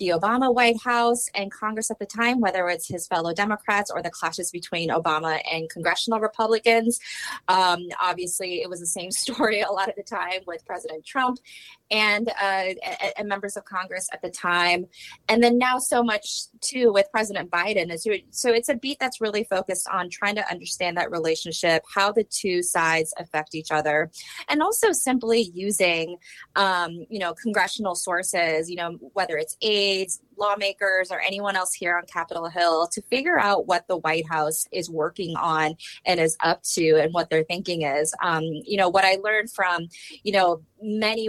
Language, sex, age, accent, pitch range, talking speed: English, female, 20-39, American, 170-215 Hz, 185 wpm